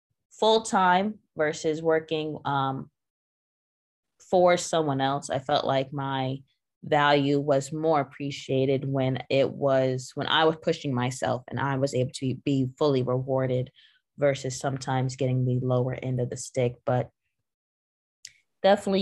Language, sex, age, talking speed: English, female, 20-39, 135 wpm